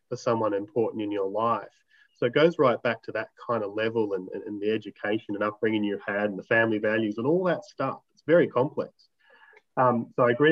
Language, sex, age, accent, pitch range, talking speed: English, male, 30-49, Australian, 105-135 Hz, 230 wpm